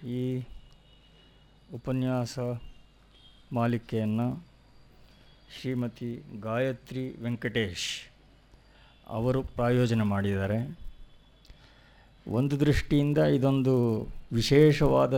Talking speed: 50 wpm